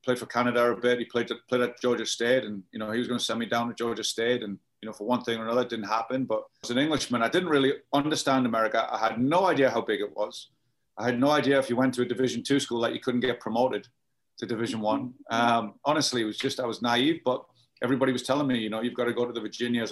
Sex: male